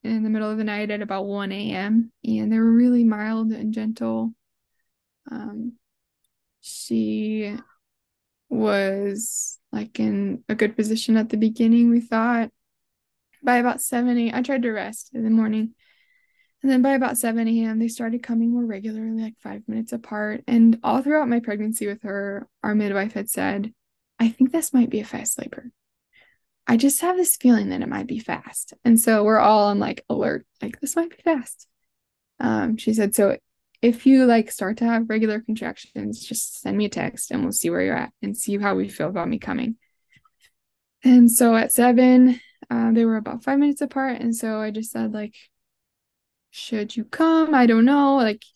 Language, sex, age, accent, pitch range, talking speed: English, female, 10-29, American, 220-255 Hz, 190 wpm